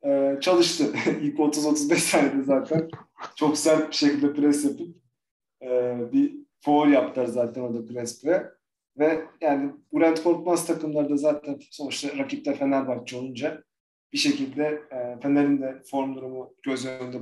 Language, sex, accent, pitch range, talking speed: Turkish, male, native, 135-170 Hz, 130 wpm